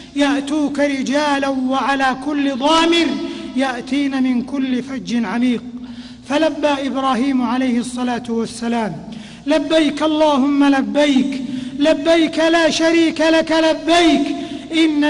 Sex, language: male, Arabic